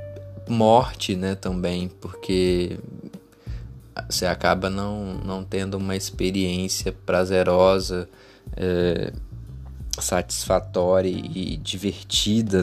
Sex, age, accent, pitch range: male, 20-39, Brazilian, 90-100 Hz